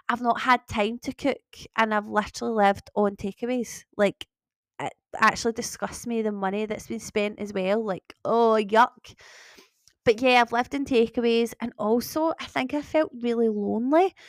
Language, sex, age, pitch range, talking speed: English, female, 20-39, 210-245 Hz, 170 wpm